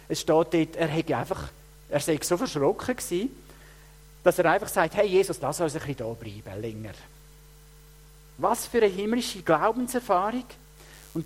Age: 50-69